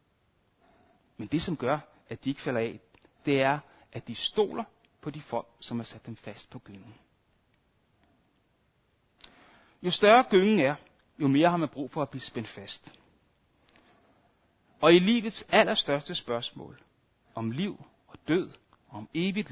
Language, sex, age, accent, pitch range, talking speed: Danish, male, 60-79, native, 120-160 Hz, 155 wpm